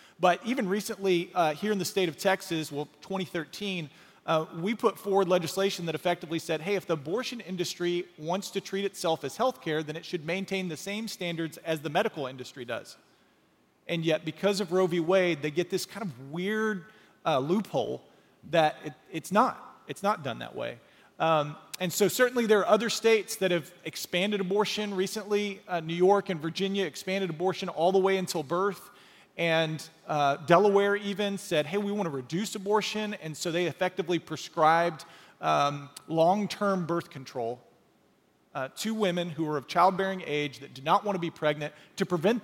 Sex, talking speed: male, 180 wpm